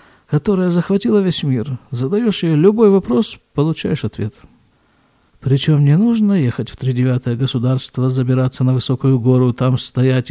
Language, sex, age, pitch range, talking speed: Russian, male, 50-69, 130-190 Hz, 135 wpm